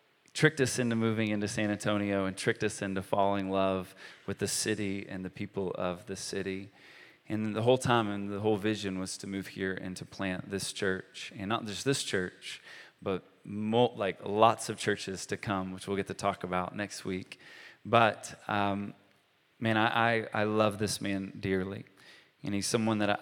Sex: male